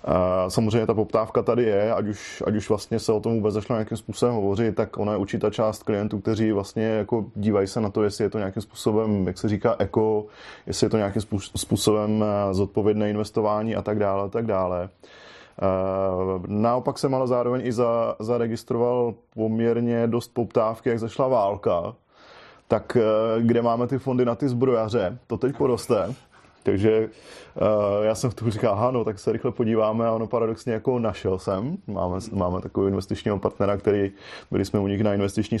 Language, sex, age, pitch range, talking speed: Czech, male, 20-39, 100-115 Hz, 180 wpm